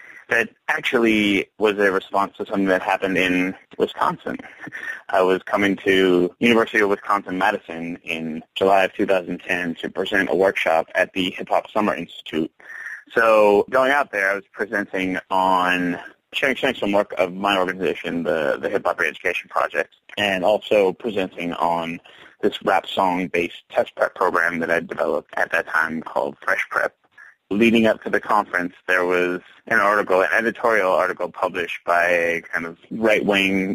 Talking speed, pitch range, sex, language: 160 wpm, 90-105 Hz, male, English